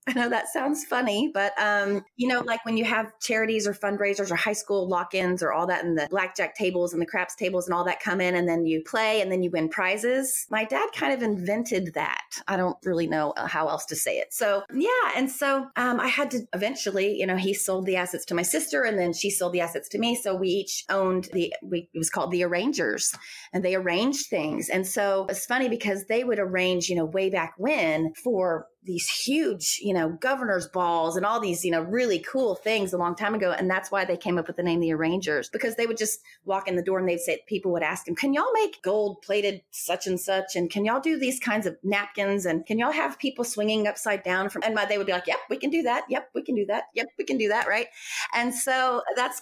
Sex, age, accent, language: female, 30-49, American, English